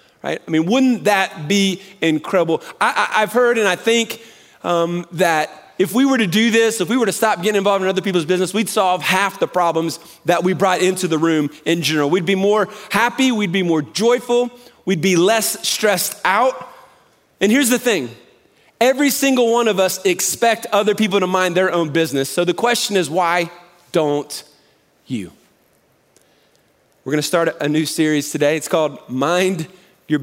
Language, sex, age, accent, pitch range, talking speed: English, male, 30-49, American, 160-205 Hz, 185 wpm